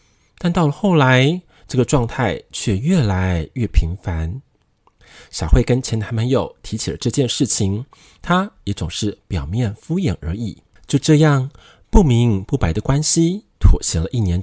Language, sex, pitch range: Chinese, male, 95-140 Hz